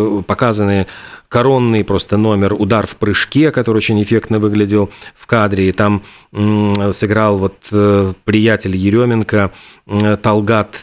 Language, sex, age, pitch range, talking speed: Russian, male, 40-59, 100-120 Hz, 110 wpm